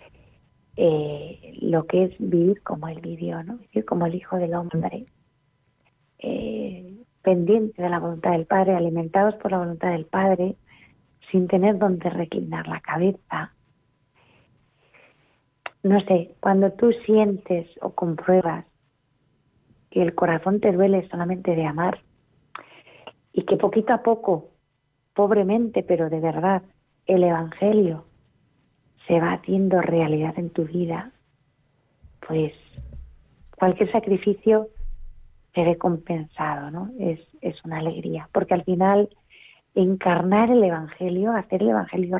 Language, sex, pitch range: Spanish, female, 165-195 Hz